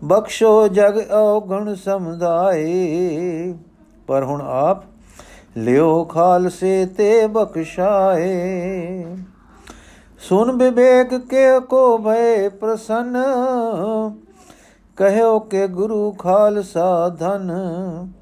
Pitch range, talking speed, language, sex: 170-215 Hz, 75 wpm, Punjabi, male